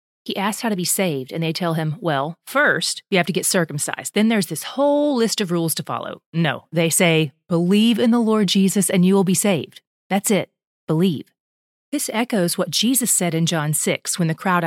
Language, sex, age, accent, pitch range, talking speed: English, female, 30-49, American, 170-225 Hz, 215 wpm